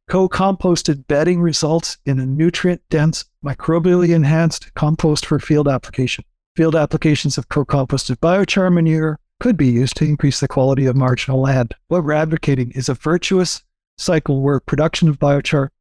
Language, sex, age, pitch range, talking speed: English, male, 50-69, 135-160 Hz, 145 wpm